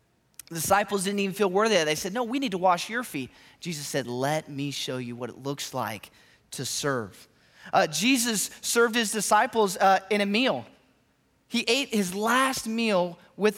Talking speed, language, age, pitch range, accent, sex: 195 wpm, English, 30-49, 185-235 Hz, American, male